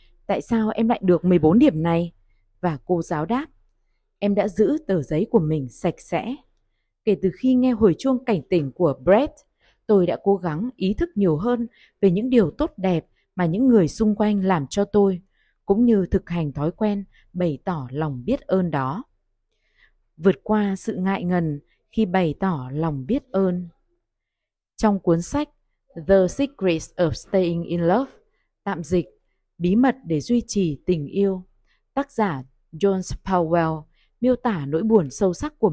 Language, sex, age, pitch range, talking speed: Vietnamese, female, 20-39, 165-220 Hz, 175 wpm